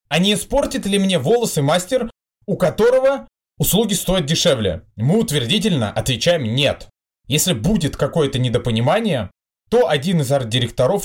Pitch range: 125-195 Hz